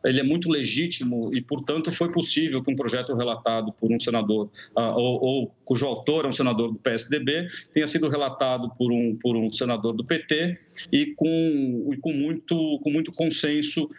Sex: male